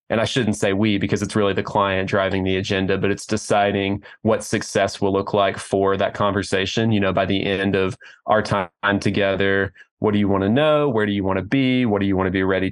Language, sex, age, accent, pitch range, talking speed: English, male, 20-39, American, 95-105 Hz, 245 wpm